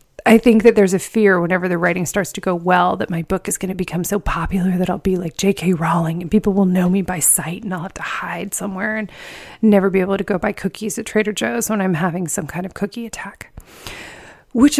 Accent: American